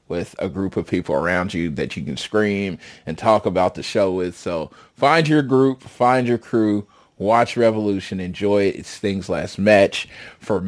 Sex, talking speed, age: male, 185 wpm, 30-49